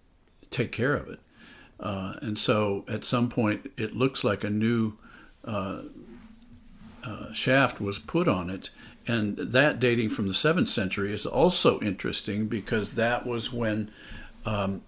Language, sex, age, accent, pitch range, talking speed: English, male, 50-69, American, 105-125 Hz, 150 wpm